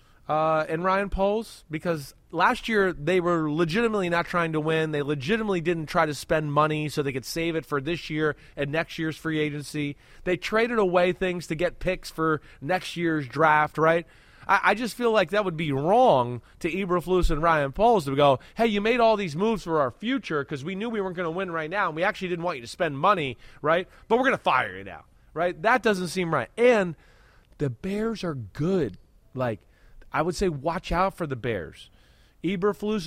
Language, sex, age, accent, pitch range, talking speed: English, male, 30-49, American, 155-195 Hz, 215 wpm